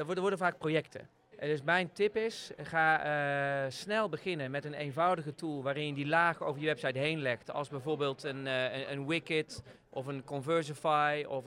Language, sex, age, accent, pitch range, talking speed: Dutch, male, 40-59, Dutch, 145-185 Hz, 195 wpm